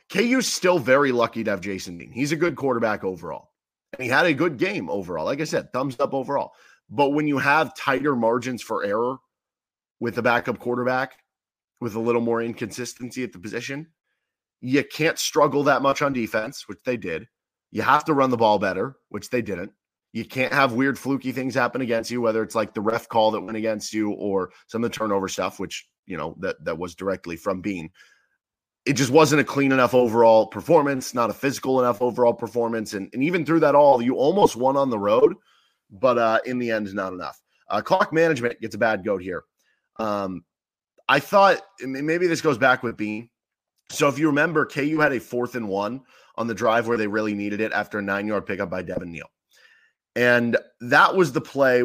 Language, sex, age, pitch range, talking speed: English, male, 30-49, 110-140 Hz, 210 wpm